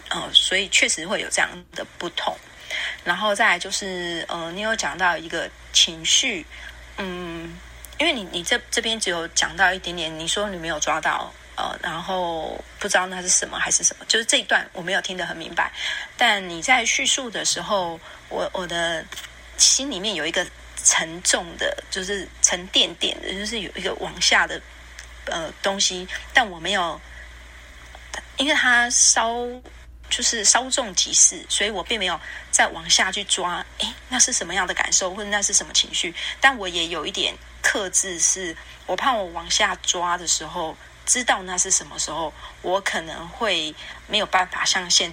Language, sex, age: Chinese, female, 30-49